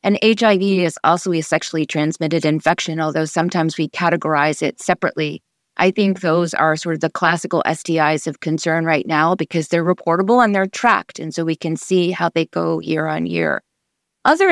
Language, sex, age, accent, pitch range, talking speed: English, female, 30-49, American, 160-185 Hz, 185 wpm